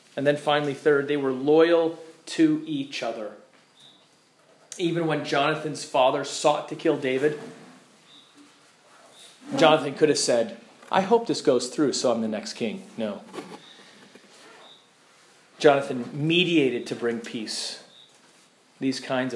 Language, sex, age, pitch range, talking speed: English, male, 40-59, 130-170 Hz, 125 wpm